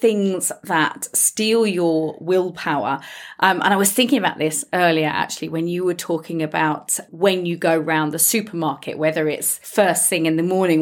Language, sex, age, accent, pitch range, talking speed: English, female, 30-49, British, 170-235 Hz, 175 wpm